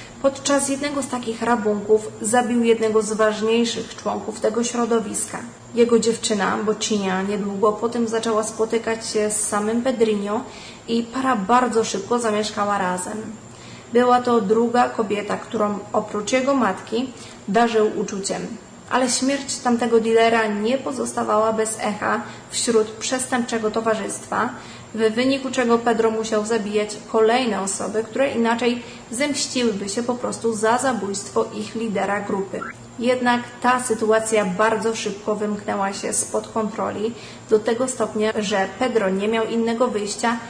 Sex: female